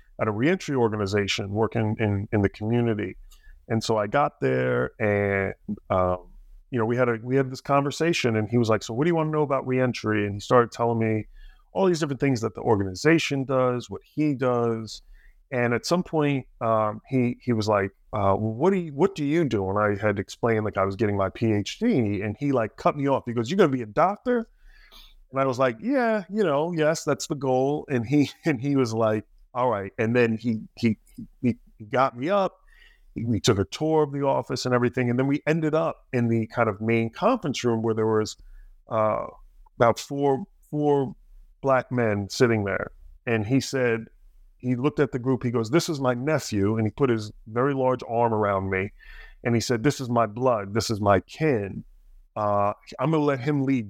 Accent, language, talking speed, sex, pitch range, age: American, English, 220 wpm, male, 105-140 Hz, 30-49